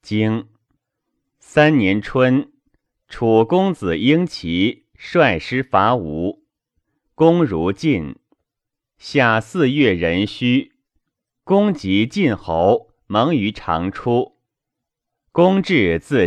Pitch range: 105-160 Hz